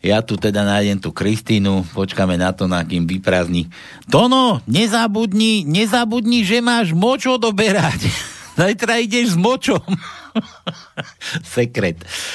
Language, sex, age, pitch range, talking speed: Slovak, male, 60-79, 90-150 Hz, 115 wpm